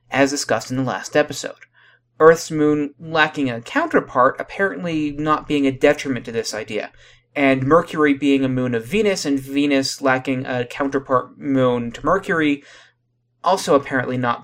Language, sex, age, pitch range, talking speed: English, male, 30-49, 130-180 Hz, 155 wpm